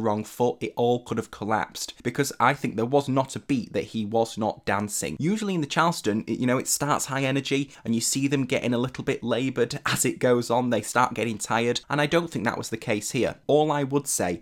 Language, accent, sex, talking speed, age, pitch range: English, British, male, 250 wpm, 20-39, 105-140 Hz